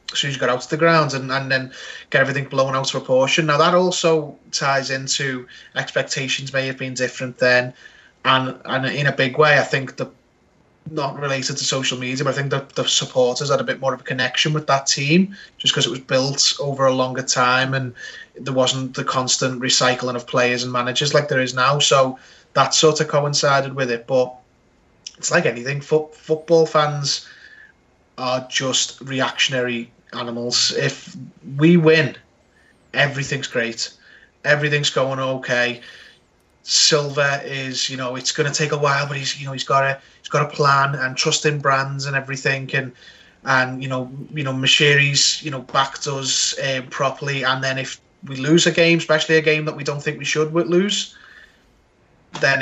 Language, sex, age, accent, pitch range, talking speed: English, male, 20-39, British, 130-145 Hz, 190 wpm